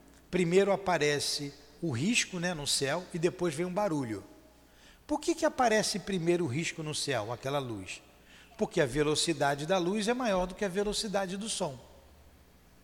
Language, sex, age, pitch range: Portuguese, male, 60-79, 140-215 Hz